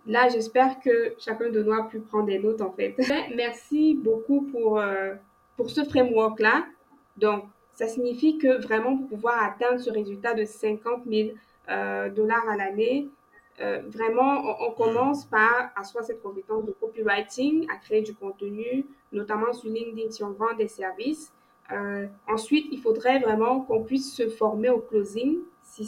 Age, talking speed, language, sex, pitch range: 20-39, 170 wpm, French, female, 210-245 Hz